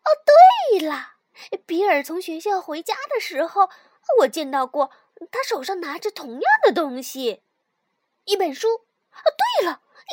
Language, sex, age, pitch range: Chinese, female, 20-39, 260-395 Hz